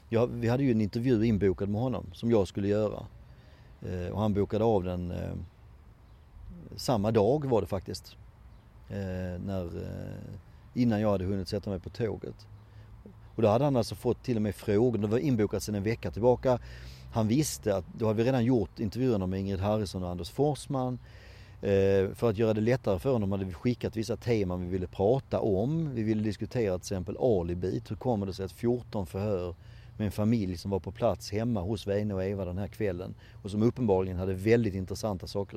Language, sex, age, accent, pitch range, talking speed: Swedish, male, 40-59, native, 95-115 Hz, 200 wpm